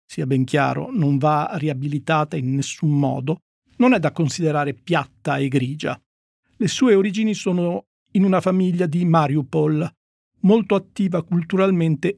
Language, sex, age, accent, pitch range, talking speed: Italian, male, 50-69, native, 145-185 Hz, 140 wpm